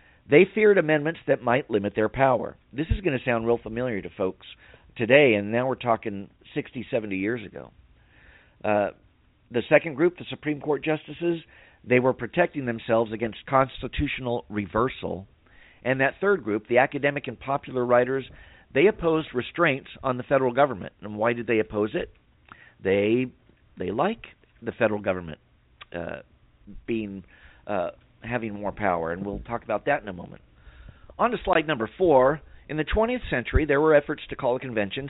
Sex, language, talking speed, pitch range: male, English, 170 wpm, 110-140 Hz